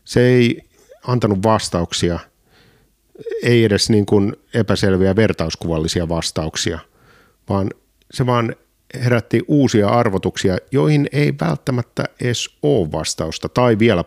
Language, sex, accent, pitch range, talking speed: Finnish, male, native, 85-120 Hz, 100 wpm